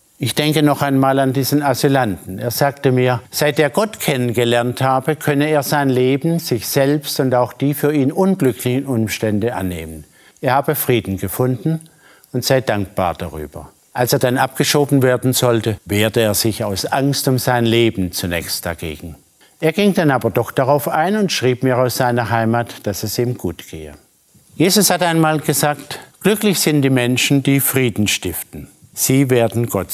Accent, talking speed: German, 170 wpm